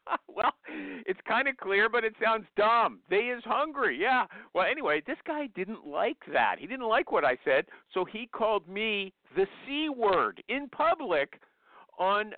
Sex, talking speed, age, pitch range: male, 175 wpm, 50-69, 200-280 Hz